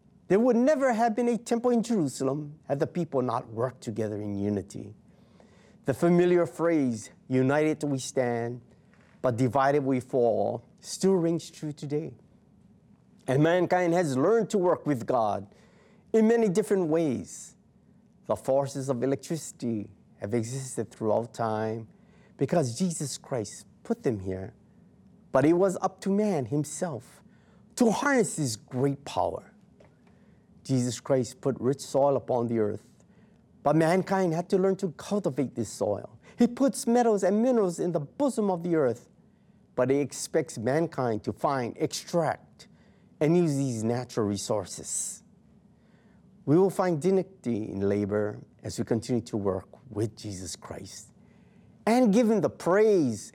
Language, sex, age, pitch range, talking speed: English, male, 30-49, 120-190 Hz, 145 wpm